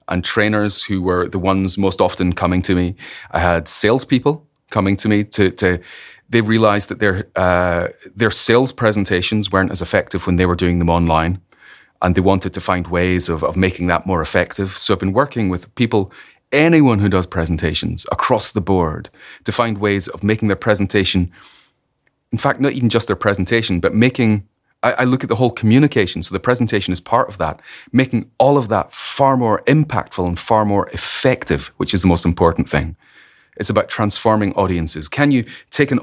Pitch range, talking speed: 90-115 Hz, 190 wpm